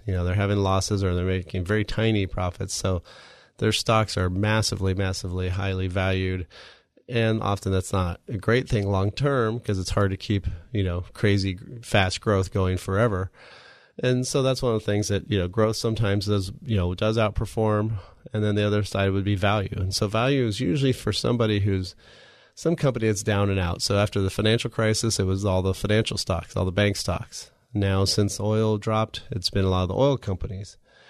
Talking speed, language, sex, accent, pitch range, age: 205 wpm, English, male, American, 95-110 Hz, 30-49